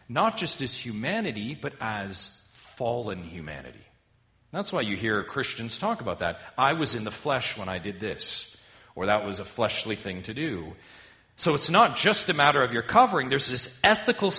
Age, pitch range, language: 40-59, 95-140 Hz, English